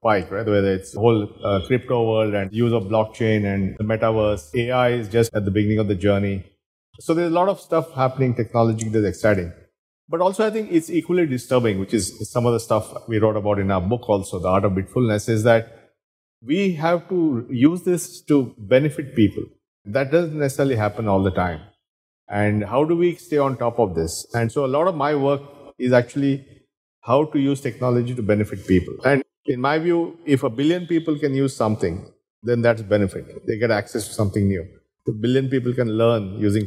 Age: 50-69